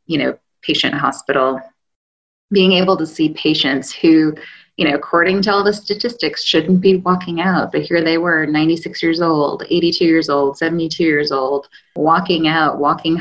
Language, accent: English, American